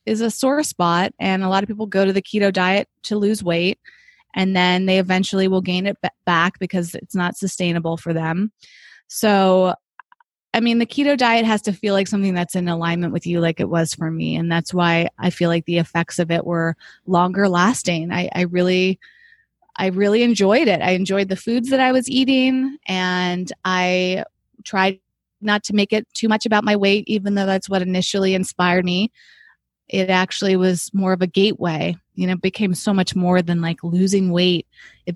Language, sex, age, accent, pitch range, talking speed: English, female, 20-39, American, 175-210 Hz, 200 wpm